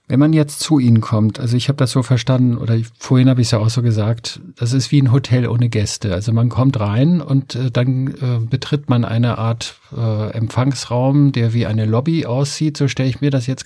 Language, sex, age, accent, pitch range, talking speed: German, male, 50-69, German, 115-140 Hz, 235 wpm